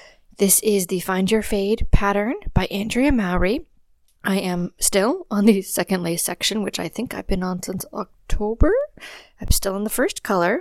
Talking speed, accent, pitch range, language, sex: 180 wpm, American, 185-225 Hz, English, female